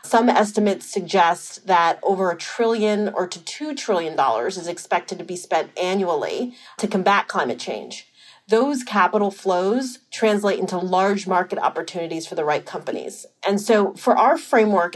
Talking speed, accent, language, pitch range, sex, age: 150 wpm, American, English, 180-230 Hz, female, 30-49